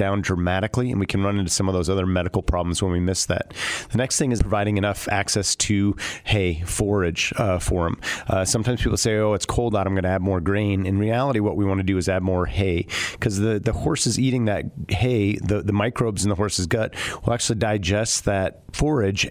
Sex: male